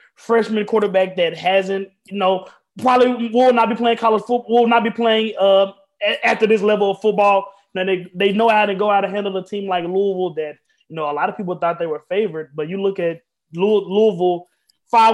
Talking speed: 220 wpm